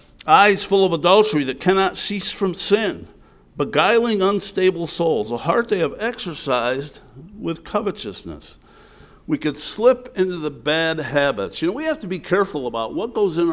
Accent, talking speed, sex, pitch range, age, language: American, 165 wpm, male, 155-215 Hz, 60-79, English